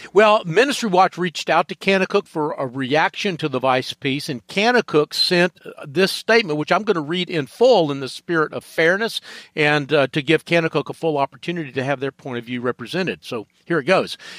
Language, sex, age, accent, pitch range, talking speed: English, male, 50-69, American, 145-190 Hz, 210 wpm